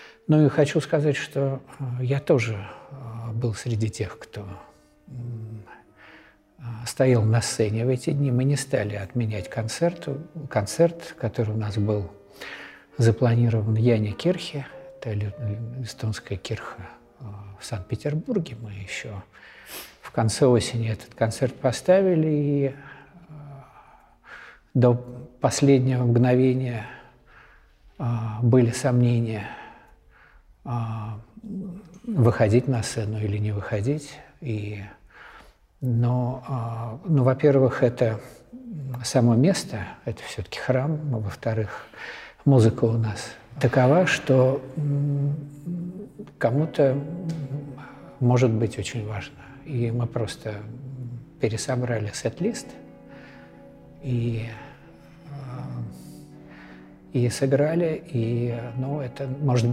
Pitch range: 115-140 Hz